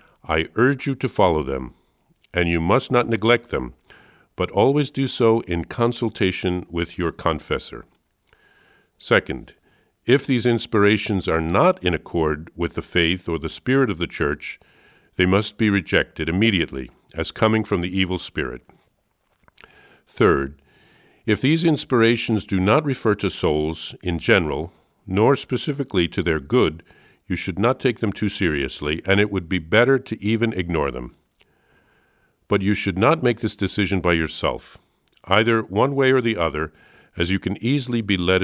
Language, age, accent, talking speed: English, 50-69, American, 160 wpm